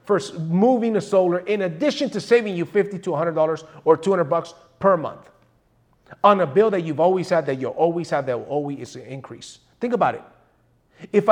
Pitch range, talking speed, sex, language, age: 150-205 Hz, 185 wpm, male, English, 30-49